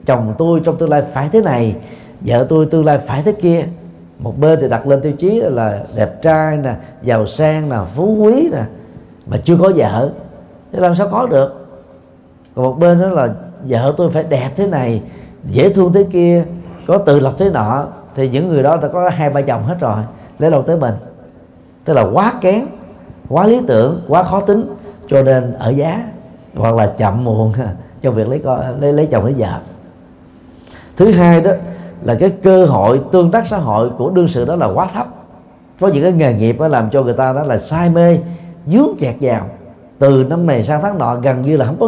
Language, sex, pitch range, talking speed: Vietnamese, male, 120-175 Hz, 215 wpm